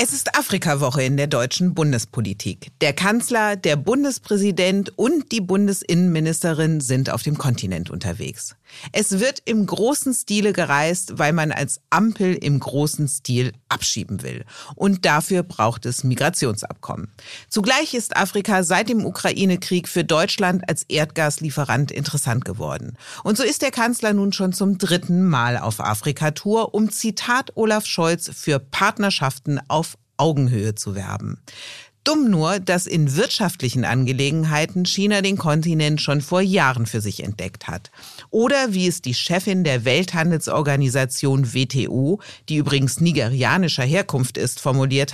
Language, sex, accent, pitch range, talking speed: German, female, German, 135-195 Hz, 135 wpm